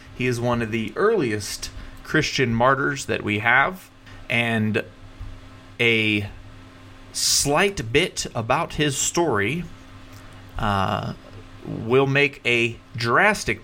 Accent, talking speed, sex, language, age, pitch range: American, 100 wpm, male, English, 30-49, 100-125 Hz